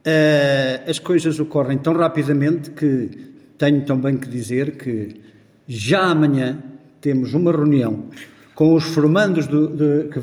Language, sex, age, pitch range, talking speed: Portuguese, male, 50-69, 130-155 Hz, 115 wpm